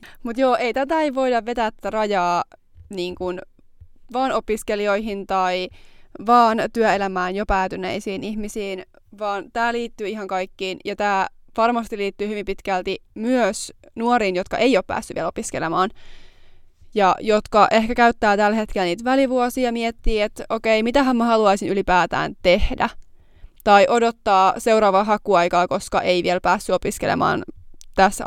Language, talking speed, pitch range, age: Finnish, 130 wpm, 195-245 Hz, 20-39